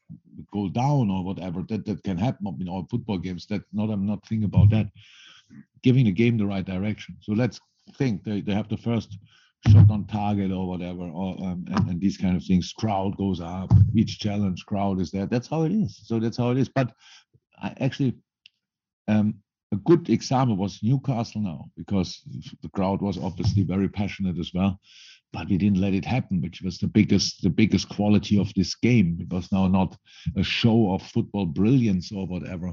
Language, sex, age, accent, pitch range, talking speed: English, male, 50-69, German, 95-115 Hz, 200 wpm